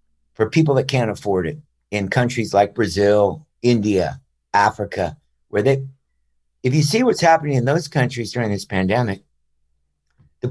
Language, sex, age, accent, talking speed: English, male, 50-69, American, 135 wpm